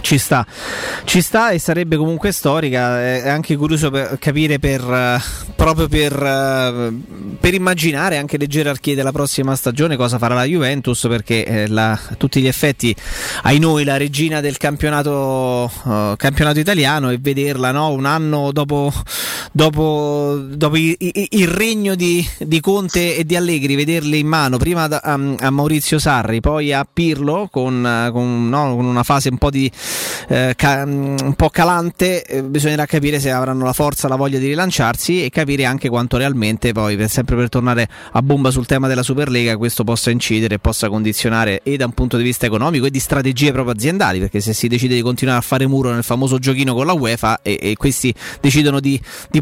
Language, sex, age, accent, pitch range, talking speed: Italian, male, 20-39, native, 125-150 Hz, 185 wpm